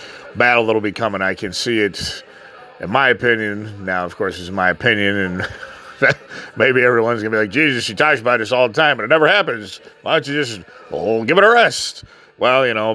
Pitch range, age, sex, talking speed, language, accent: 100-120 Hz, 30-49, male, 220 wpm, English, American